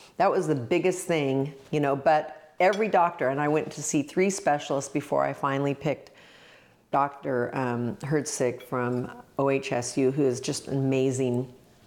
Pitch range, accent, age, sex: 130-155 Hz, American, 40-59, female